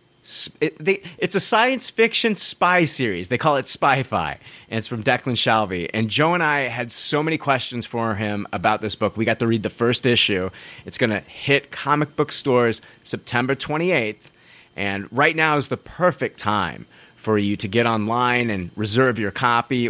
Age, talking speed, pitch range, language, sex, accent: 30-49, 180 wpm, 110-140 Hz, English, male, American